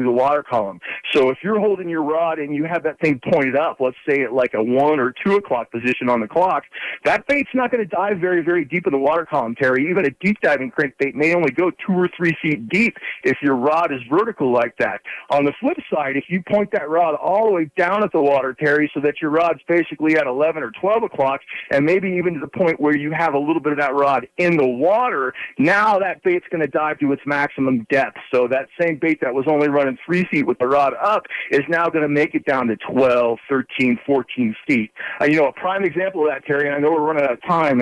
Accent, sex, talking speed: American, male, 255 wpm